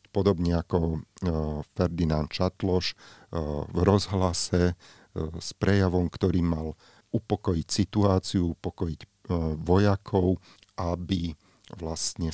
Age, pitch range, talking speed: 40-59, 85-95 Hz, 80 wpm